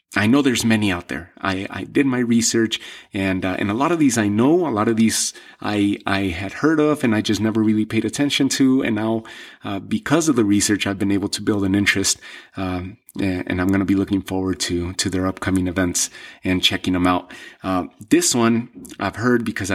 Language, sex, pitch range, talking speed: English, male, 95-120 Hz, 220 wpm